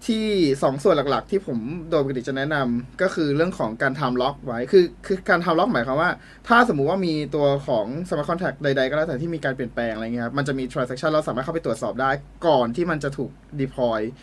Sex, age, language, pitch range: male, 20-39, Thai, 130-180 Hz